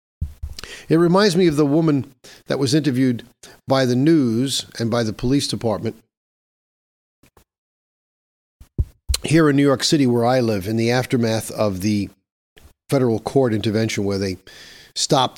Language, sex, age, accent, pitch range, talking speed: English, male, 50-69, American, 100-140 Hz, 140 wpm